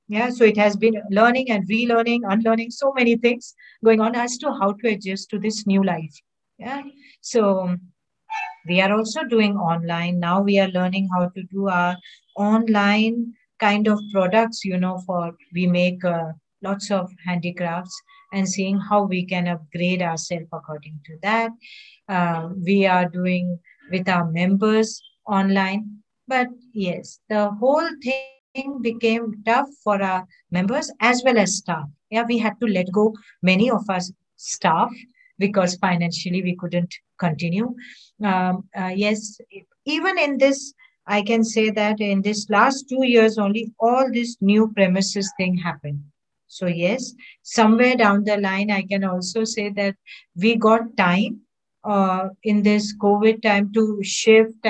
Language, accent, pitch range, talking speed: English, Indian, 180-225 Hz, 155 wpm